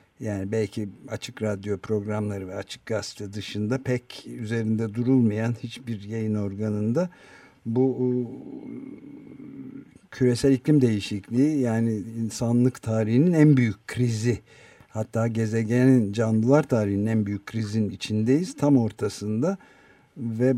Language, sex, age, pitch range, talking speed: Turkish, male, 50-69, 110-130 Hz, 105 wpm